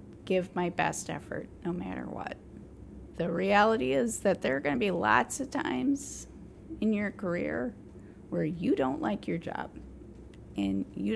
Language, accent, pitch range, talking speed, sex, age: English, American, 160-245 Hz, 160 wpm, female, 30-49